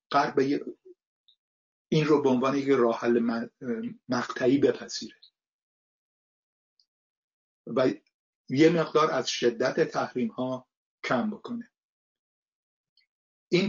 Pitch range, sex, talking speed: 120-155 Hz, male, 75 wpm